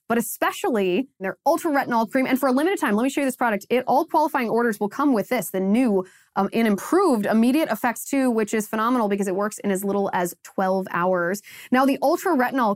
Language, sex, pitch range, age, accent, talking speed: English, female, 195-255 Hz, 20-39, American, 225 wpm